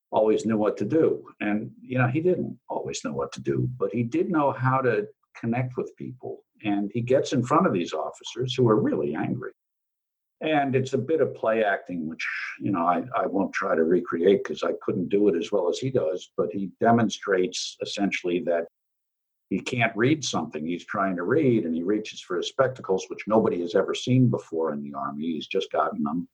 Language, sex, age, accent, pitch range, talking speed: English, male, 60-79, American, 100-150 Hz, 215 wpm